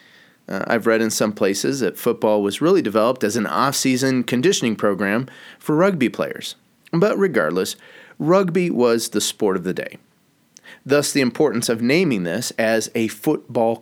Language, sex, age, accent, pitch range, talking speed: English, male, 30-49, American, 110-145 Hz, 160 wpm